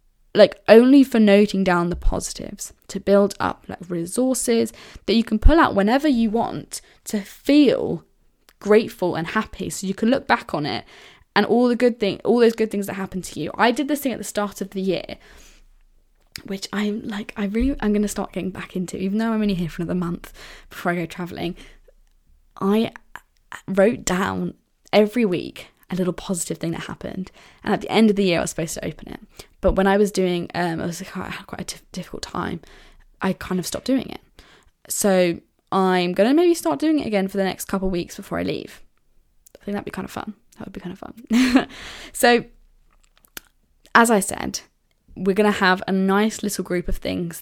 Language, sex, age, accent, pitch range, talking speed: English, female, 10-29, British, 185-225 Hz, 210 wpm